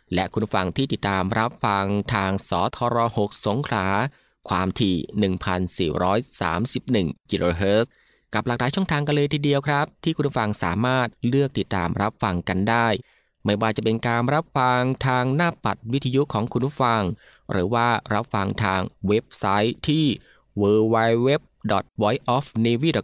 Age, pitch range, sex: 20-39, 100-135 Hz, male